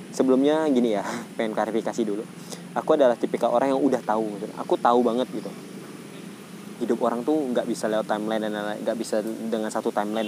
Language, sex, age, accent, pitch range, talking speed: English, male, 20-39, Indonesian, 110-175 Hz, 180 wpm